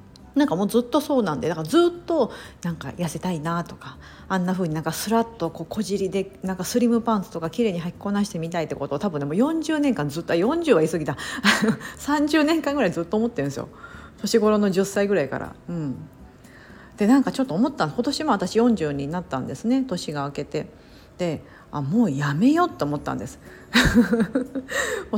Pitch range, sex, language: 165-245 Hz, female, Japanese